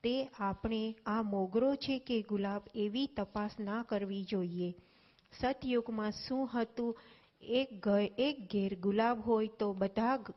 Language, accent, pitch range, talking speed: Gujarati, native, 200-240 Hz, 135 wpm